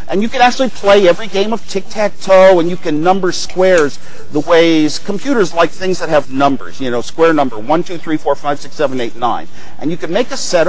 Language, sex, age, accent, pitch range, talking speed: English, male, 50-69, American, 155-200 Hz, 230 wpm